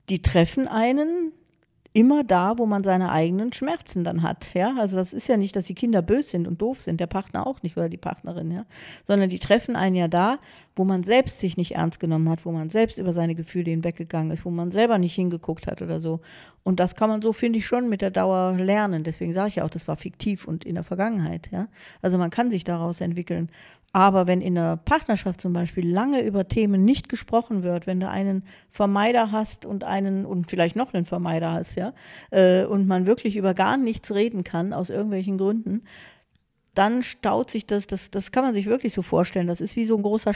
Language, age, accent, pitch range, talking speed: German, 40-59, German, 180-220 Hz, 220 wpm